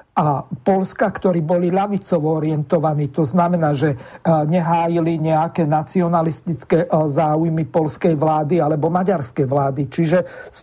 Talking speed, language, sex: 115 wpm, Slovak, male